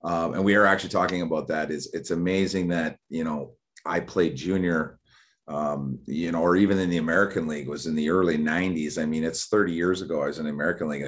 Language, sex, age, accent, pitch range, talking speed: English, male, 30-49, American, 85-95 Hz, 235 wpm